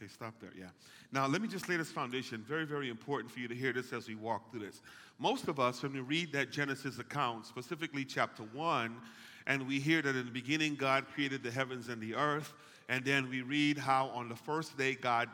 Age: 40-59